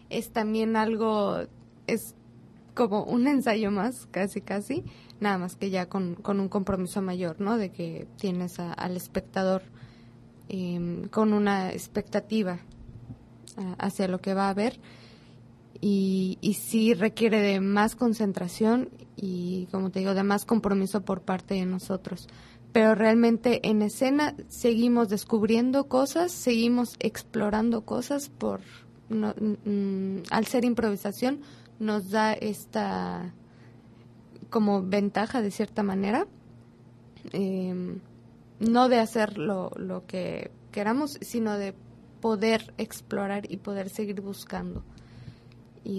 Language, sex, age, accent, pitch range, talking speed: English, female, 20-39, Mexican, 185-220 Hz, 120 wpm